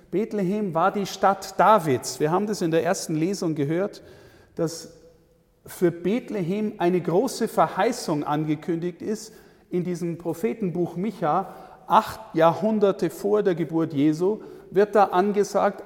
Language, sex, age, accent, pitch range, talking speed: German, male, 50-69, German, 155-200 Hz, 130 wpm